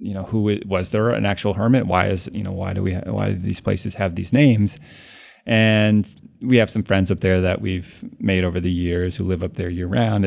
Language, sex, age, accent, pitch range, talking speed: English, male, 30-49, American, 90-105 Hz, 250 wpm